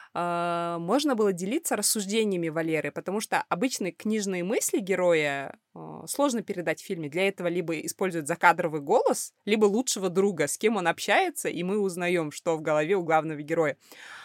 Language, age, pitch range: Russian, 20-39, 165-225 Hz